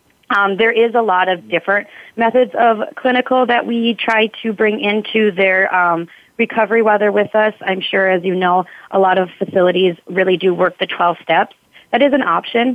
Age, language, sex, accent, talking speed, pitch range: 30-49, English, female, American, 195 wpm, 170-195 Hz